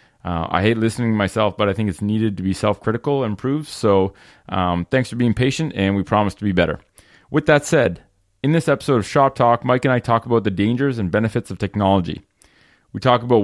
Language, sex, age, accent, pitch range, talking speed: English, male, 30-49, American, 105-130 Hz, 230 wpm